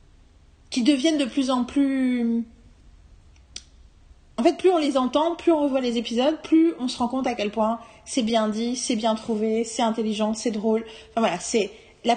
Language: French